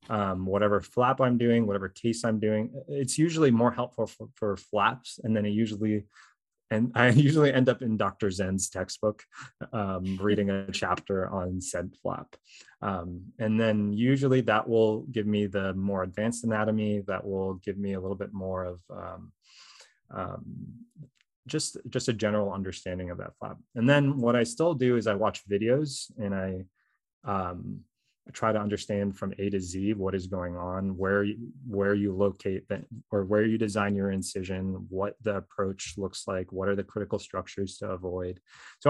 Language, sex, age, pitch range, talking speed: English, male, 20-39, 95-120 Hz, 180 wpm